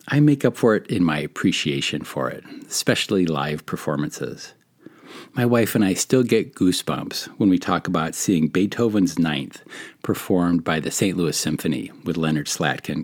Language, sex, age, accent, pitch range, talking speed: English, male, 50-69, American, 85-120 Hz, 165 wpm